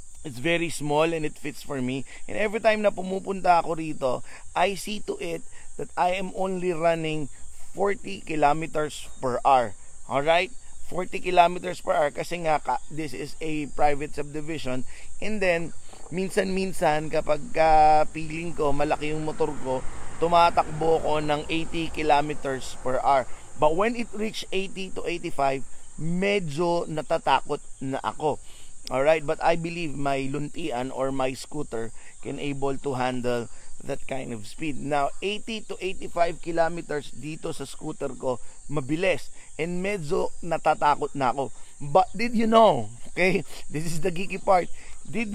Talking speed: 145 wpm